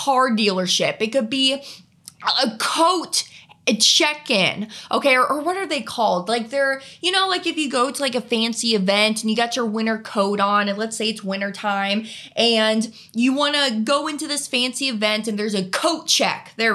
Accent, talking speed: American, 200 wpm